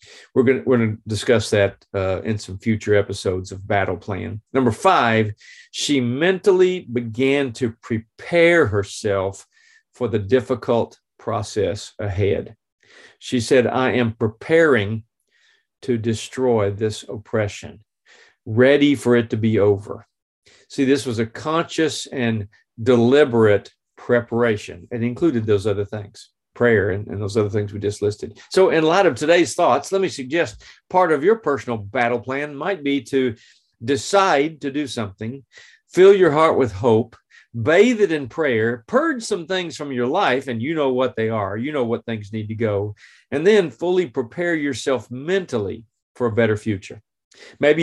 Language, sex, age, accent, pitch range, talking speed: English, male, 50-69, American, 110-150 Hz, 160 wpm